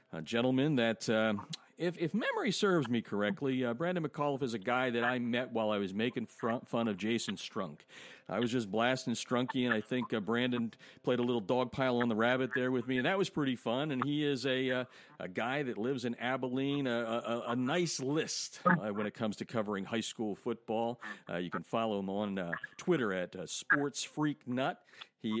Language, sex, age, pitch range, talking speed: English, male, 50-69, 105-130 Hz, 210 wpm